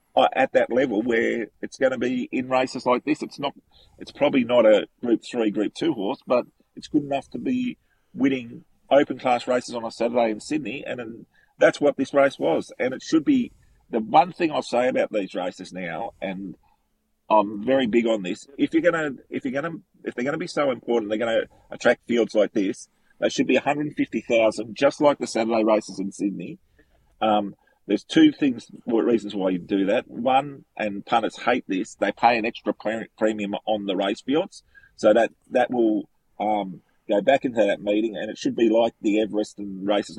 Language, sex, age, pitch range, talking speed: English, male, 40-59, 105-145 Hz, 205 wpm